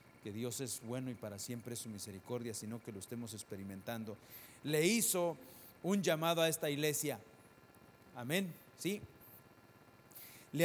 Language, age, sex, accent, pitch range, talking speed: English, 40-59, male, Mexican, 115-140 Hz, 140 wpm